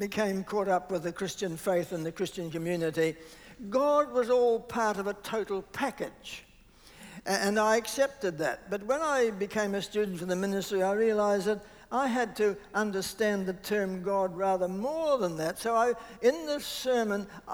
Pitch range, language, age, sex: 190-235 Hz, English, 60-79, male